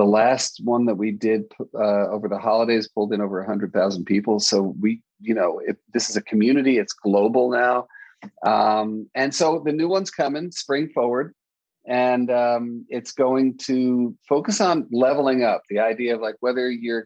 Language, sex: English, male